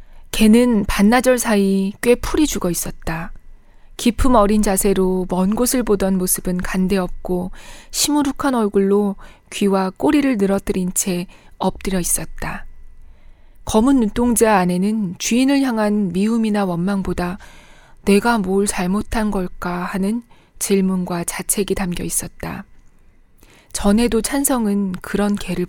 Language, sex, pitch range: Korean, female, 185-225 Hz